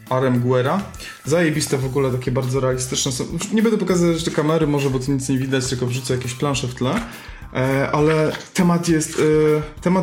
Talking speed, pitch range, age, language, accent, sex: 160 wpm, 125-145 Hz, 20-39, Polish, native, male